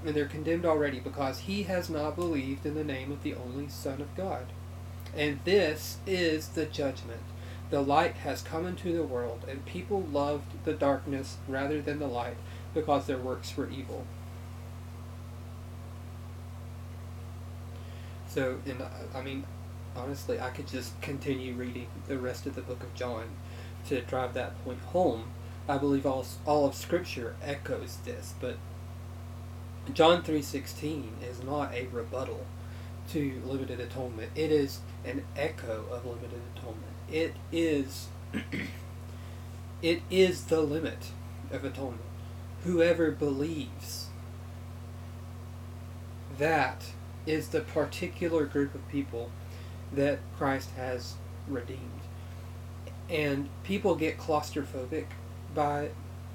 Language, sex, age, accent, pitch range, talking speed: English, male, 30-49, American, 90-135 Hz, 125 wpm